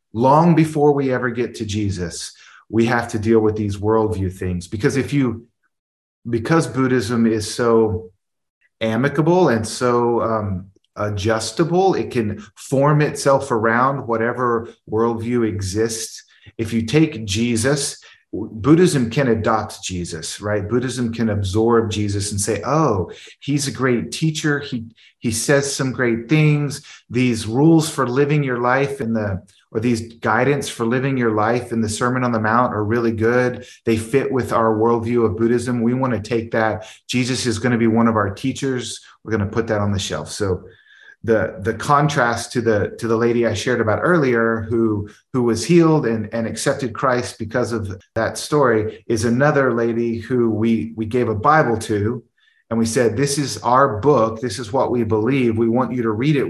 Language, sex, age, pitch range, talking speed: English, male, 30-49, 110-130 Hz, 175 wpm